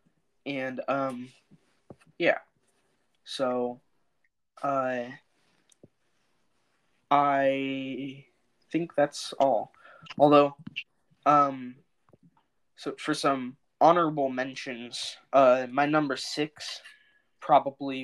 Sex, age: male, 20-39